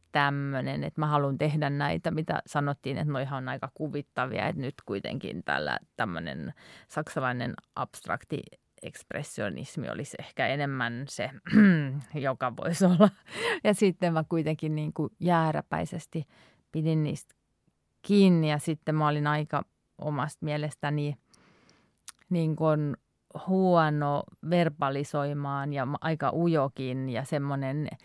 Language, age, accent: Finnish, 30-49, native